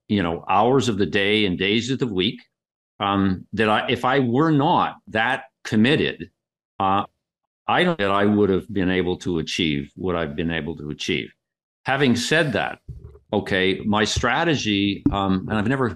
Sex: male